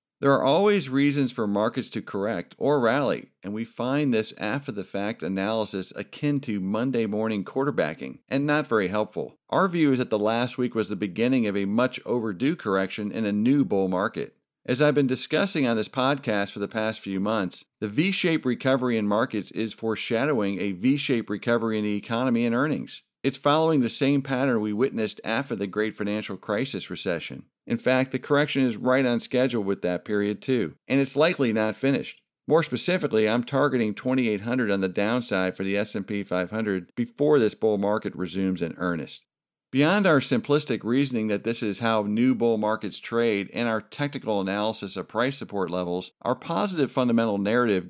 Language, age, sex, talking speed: English, 50-69, male, 180 wpm